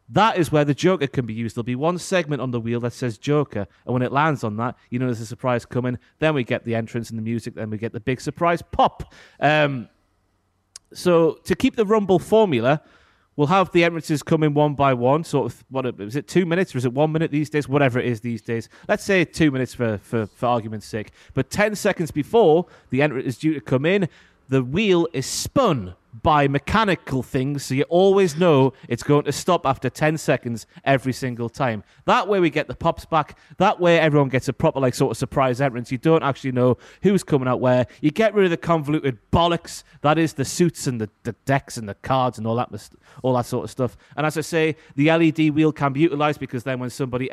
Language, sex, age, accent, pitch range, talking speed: English, male, 30-49, British, 120-160 Hz, 240 wpm